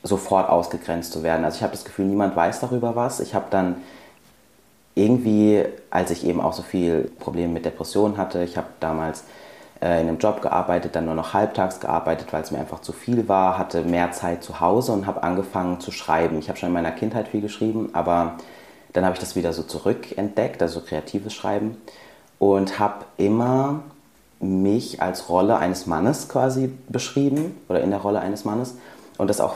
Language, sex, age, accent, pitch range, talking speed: German, male, 30-49, German, 85-105 Hz, 195 wpm